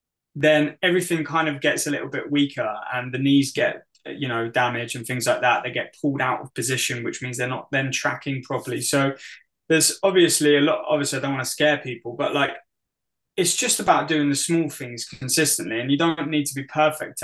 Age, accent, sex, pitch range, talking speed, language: 20-39, British, male, 120-145 Hz, 215 wpm, English